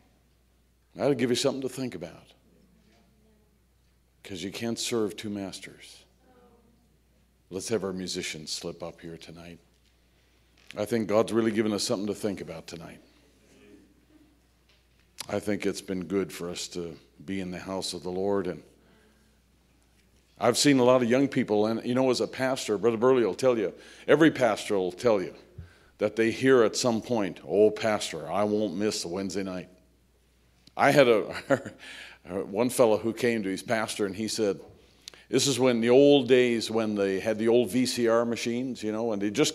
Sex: male